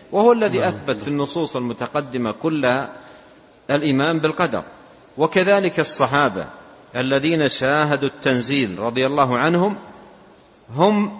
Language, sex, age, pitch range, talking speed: Arabic, male, 50-69, 110-150 Hz, 95 wpm